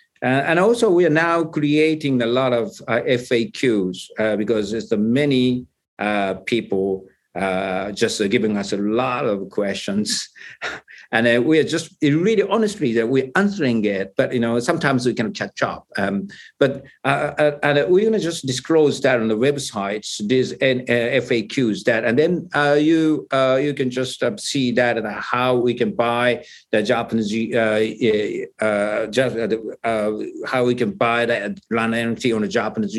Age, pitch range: 60-79, 110-150 Hz